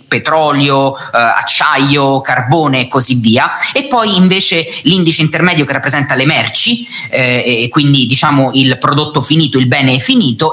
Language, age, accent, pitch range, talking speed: Italian, 30-49, native, 130-165 Hz, 150 wpm